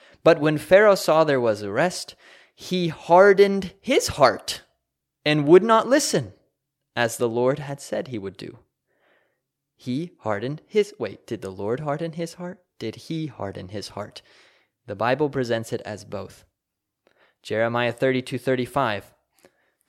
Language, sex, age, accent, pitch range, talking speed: English, male, 20-39, American, 115-150 Hz, 140 wpm